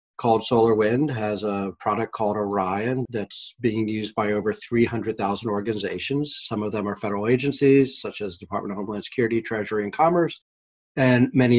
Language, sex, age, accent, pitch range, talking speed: English, male, 30-49, American, 105-120 Hz, 160 wpm